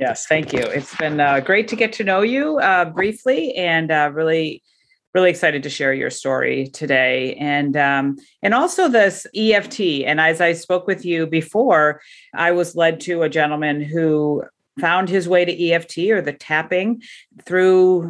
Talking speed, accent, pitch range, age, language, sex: 175 wpm, American, 155-210 Hz, 40-59, English, female